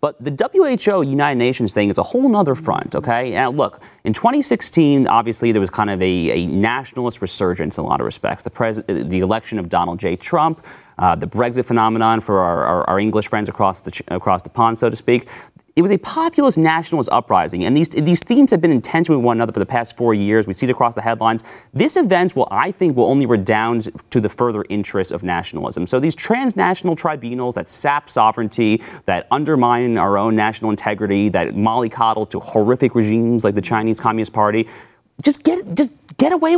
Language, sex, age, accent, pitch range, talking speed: English, male, 30-49, American, 110-175 Hz, 210 wpm